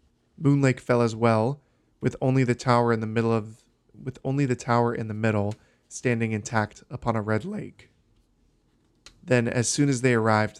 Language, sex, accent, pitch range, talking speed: English, male, American, 115-125 Hz, 180 wpm